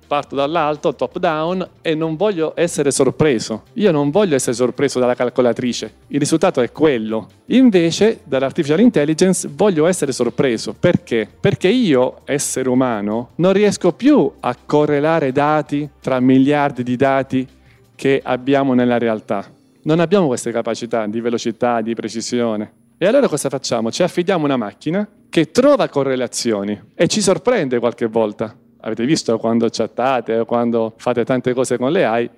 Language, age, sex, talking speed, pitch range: Italian, 40-59, male, 150 wpm, 120-165 Hz